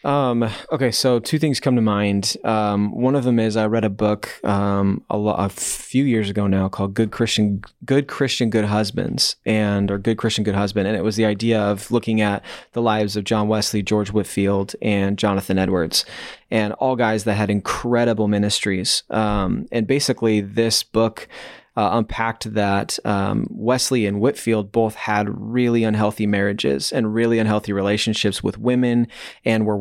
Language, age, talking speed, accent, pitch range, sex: English, 20-39, 175 wpm, American, 100-115 Hz, male